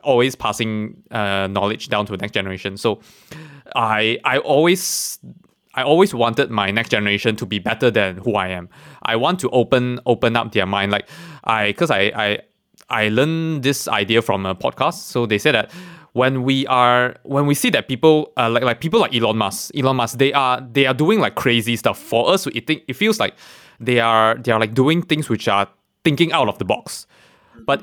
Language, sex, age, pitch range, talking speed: English, male, 20-39, 110-140 Hz, 210 wpm